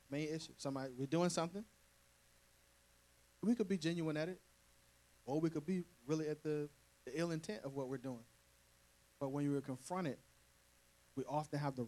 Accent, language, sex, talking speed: American, English, male, 170 wpm